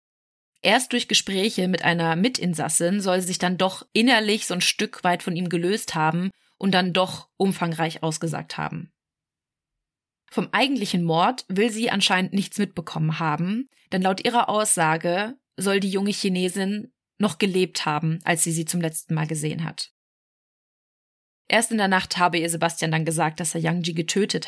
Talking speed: 165 wpm